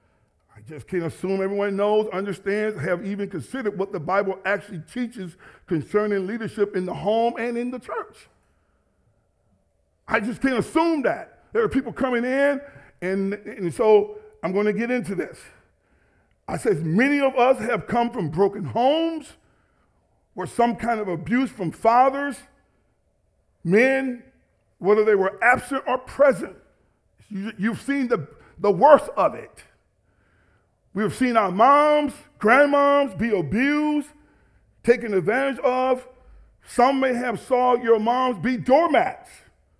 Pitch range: 185-275 Hz